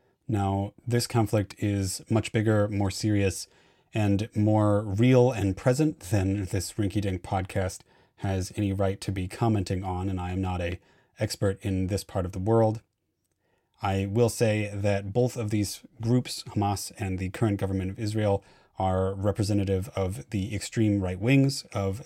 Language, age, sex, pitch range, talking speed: English, 30-49, male, 95-115 Hz, 165 wpm